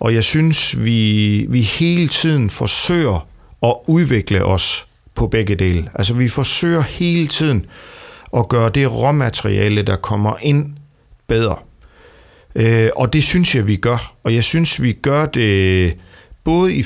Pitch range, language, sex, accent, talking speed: 105-140 Hz, Danish, male, native, 145 wpm